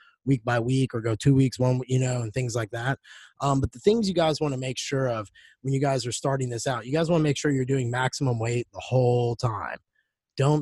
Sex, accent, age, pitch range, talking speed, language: male, American, 20-39, 120-145 Hz, 260 wpm, English